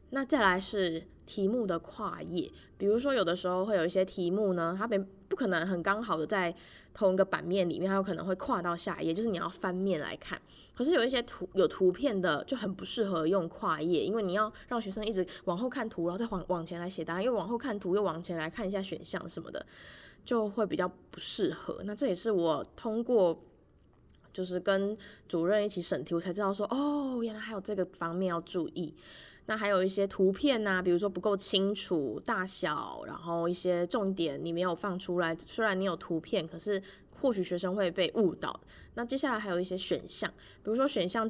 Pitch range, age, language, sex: 175-215 Hz, 20-39, Chinese, female